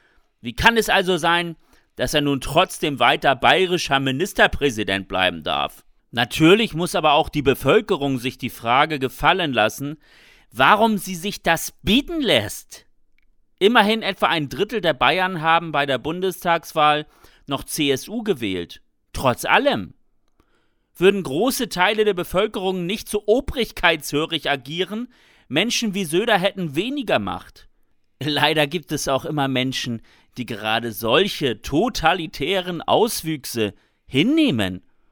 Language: German